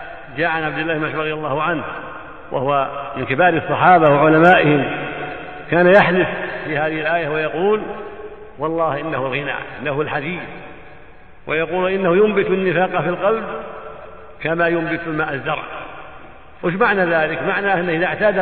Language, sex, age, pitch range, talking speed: Arabic, male, 60-79, 155-185 Hz, 120 wpm